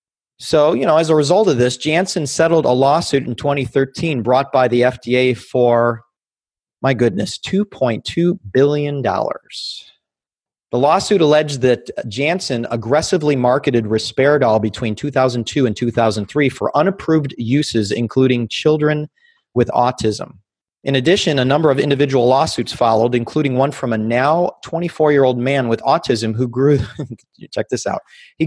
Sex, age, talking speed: male, 30-49, 135 wpm